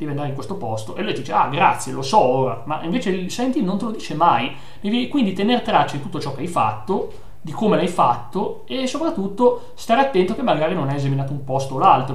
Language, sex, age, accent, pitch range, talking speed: Italian, male, 30-49, native, 135-180 Hz, 235 wpm